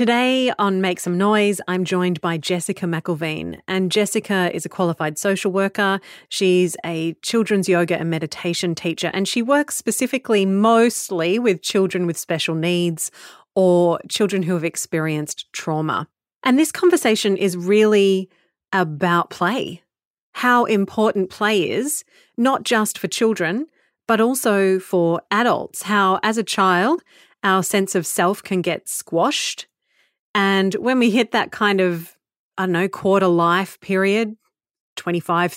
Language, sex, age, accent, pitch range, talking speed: English, female, 30-49, Australian, 170-210 Hz, 140 wpm